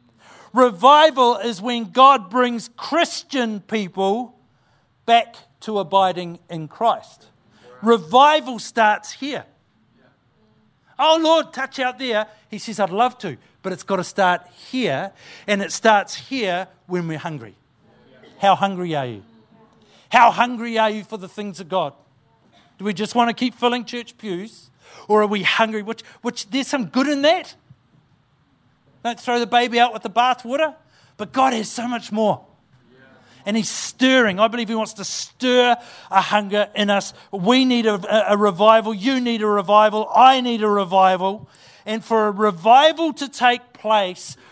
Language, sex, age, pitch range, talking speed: English, male, 50-69, 190-245 Hz, 160 wpm